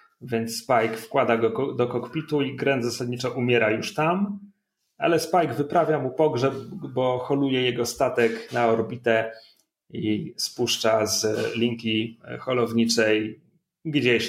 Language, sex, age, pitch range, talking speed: Polish, male, 30-49, 110-145 Hz, 120 wpm